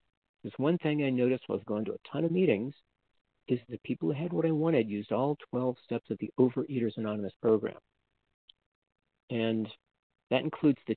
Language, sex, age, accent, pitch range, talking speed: English, male, 50-69, American, 115-150 Hz, 185 wpm